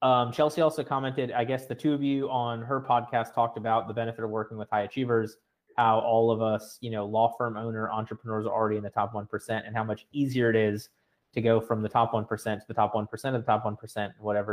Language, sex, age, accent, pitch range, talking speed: English, male, 20-39, American, 110-125 Hz, 245 wpm